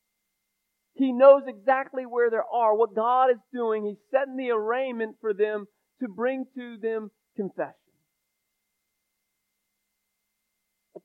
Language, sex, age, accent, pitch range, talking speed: English, male, 40-59, American, 195-240 Hz, 120 wpm